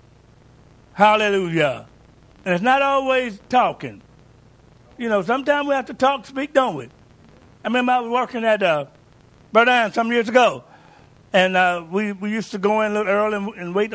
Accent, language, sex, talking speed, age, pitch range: American, English, male, 180 wpm, 60-79, 155-230 Hz